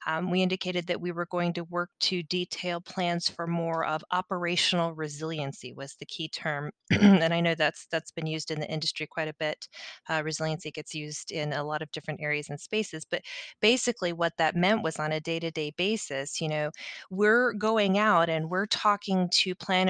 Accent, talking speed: American, 200 wpm